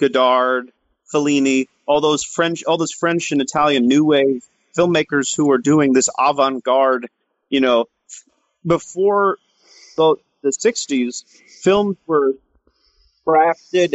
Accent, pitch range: American, 125-150 Hz